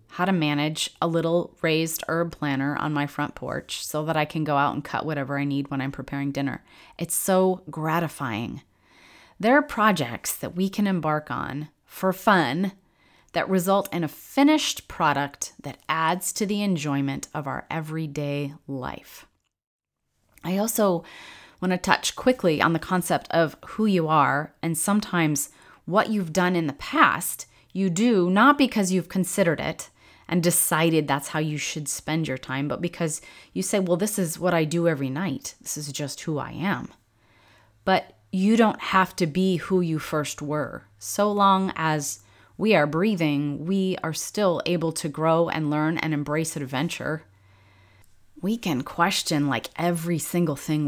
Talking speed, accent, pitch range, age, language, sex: 170 wpm, American, 145-185 Hz, 30-49, English, female